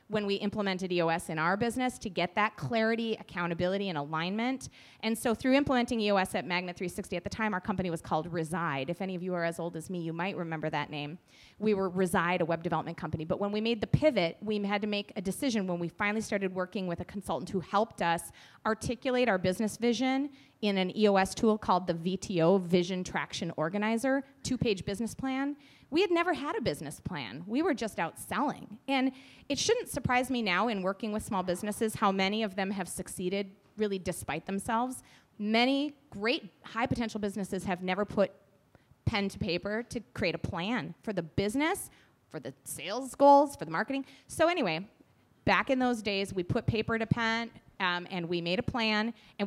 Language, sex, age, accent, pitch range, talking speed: English, female, 30-49, American, 180-225 Hz, 200 wpm